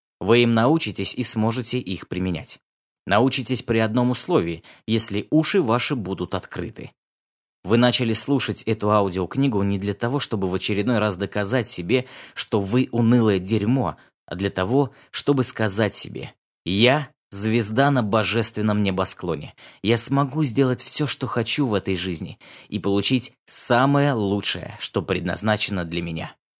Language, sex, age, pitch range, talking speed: Russian, male, 20-39, 100-130 Hz, 140 wpm